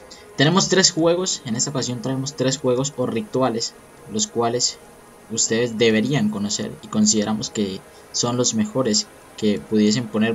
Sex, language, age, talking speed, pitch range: male, Spanish, 10-29, 145 wpm, 105-130 Hz